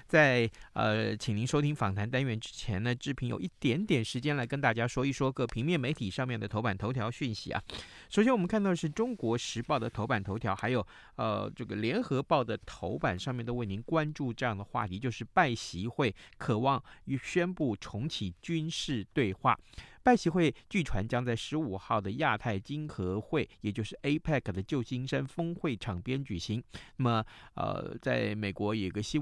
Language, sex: Chinese, male